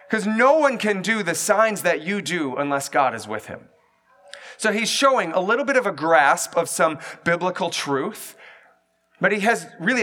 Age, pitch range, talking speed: 30-49, 160-210 Hz, 190 wpm